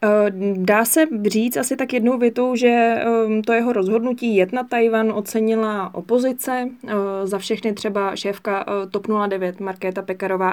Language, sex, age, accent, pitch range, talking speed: Czech, female, 20-39, native, 190-215 Hz, 130 wpm